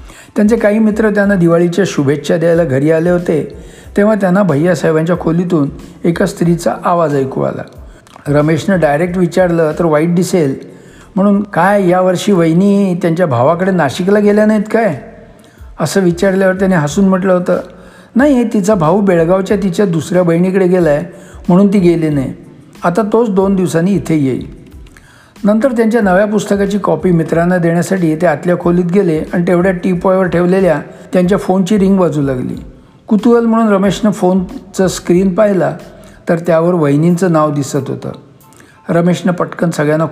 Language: Marathi